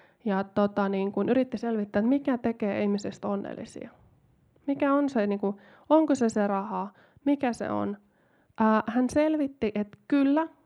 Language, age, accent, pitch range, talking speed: Finnish, 20-39, native, 200-235 Hz, 145 wpm